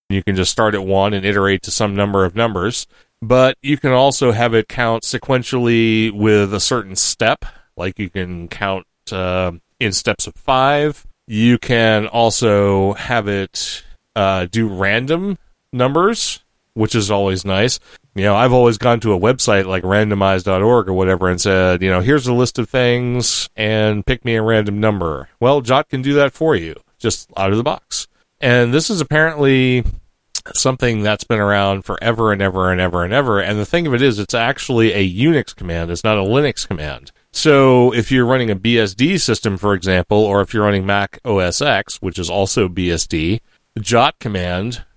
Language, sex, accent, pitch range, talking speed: English, male, American, 95-125 Hz, 185 wpm